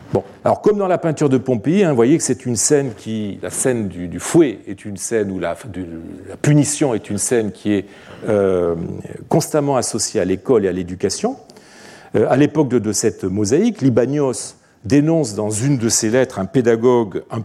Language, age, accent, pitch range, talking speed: French, 40-59, French, 105-150 Hz, 205 wpm